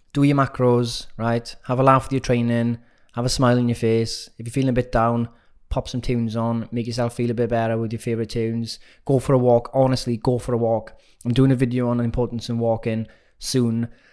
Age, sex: 20-39, male